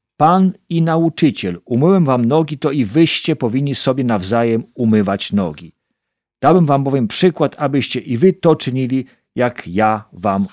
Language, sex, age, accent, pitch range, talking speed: Polish, male, 50-69, native, 105-150 Hz, 150 wpm